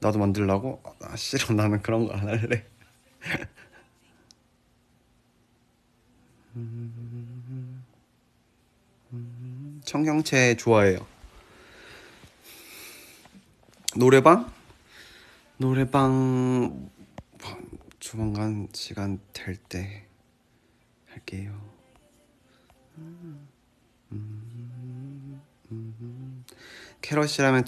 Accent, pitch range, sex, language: native, 100-125 Hz, male, Korean